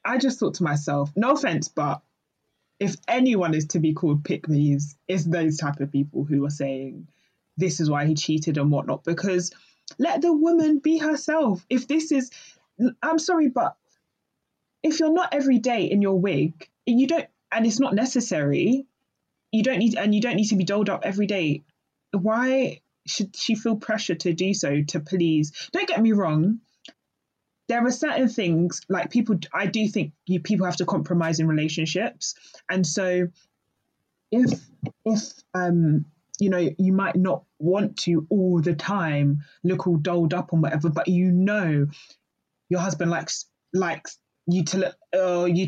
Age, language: 20-39, English